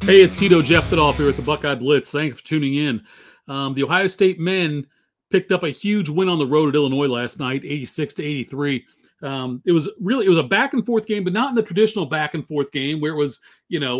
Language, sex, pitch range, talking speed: English, male, 145-190 Hz, 255 wpm